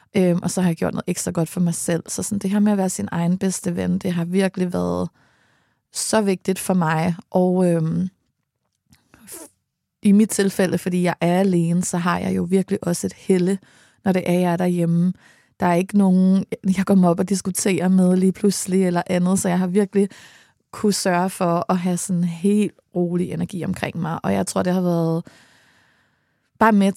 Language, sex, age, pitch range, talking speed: Danish, female, 20-39, 175-195 Hz, 205 wpm